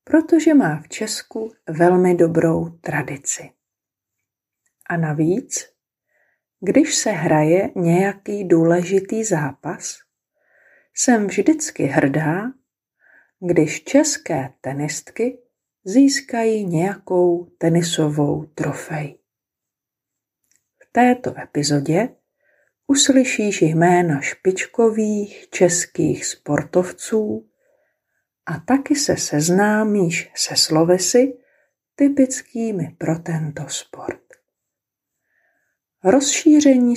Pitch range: 150-225 Hz